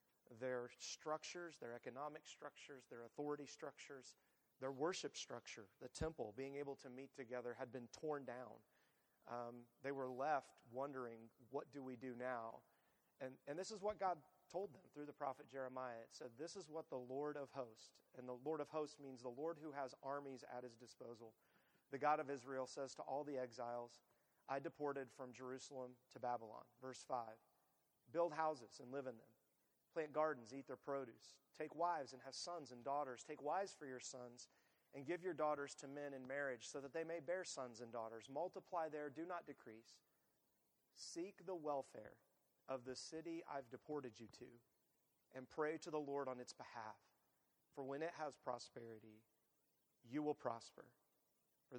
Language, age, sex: English, 40-59, male